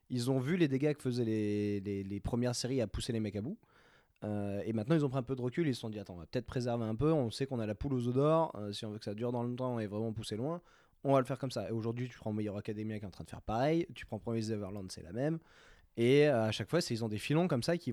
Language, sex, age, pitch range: French, male, 20-39, 105-135 Hz